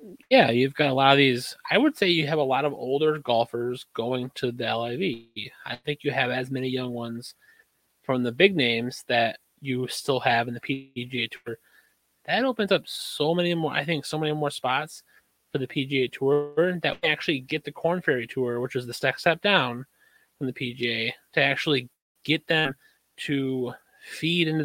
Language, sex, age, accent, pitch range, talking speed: English, male, 30-49, American, 125-155 Hz, 195 wpm